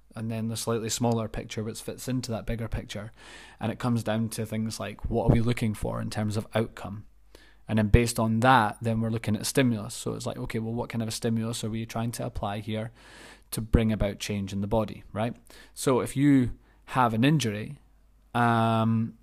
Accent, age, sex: British, 20-39, male